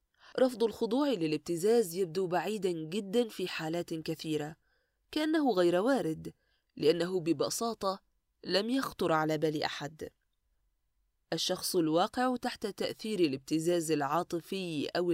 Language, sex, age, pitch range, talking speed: Arabic, female, 20-39, 160-220 Hz, 105 wpm